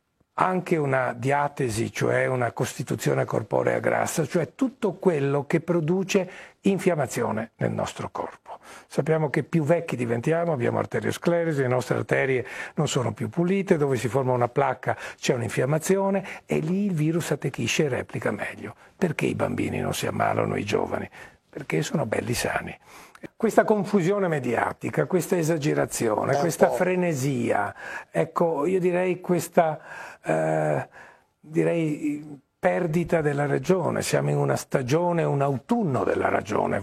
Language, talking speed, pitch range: Italian, 135 wpm, 135-180 Hz